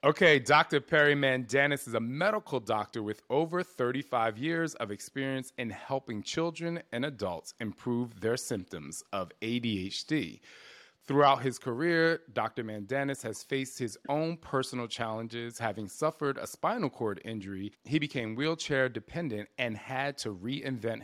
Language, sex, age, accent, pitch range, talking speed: English, male, 30-49, American, 110-145 Hz, 140 wpm